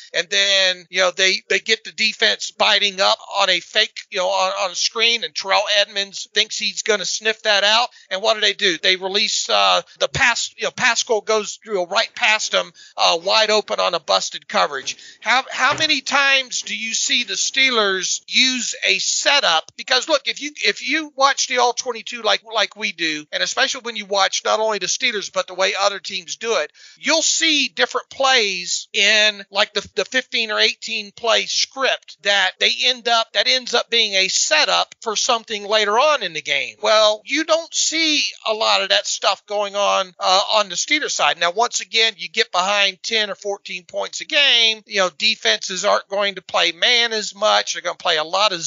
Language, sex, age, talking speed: Portuguese, male, 40-59, 210 wpm